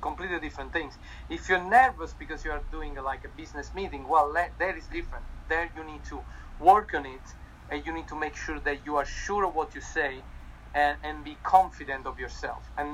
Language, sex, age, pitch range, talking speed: English, male, 40-59, 140-170 Hz, 210 wpm